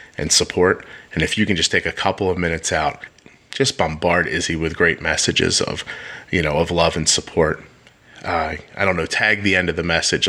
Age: 30-49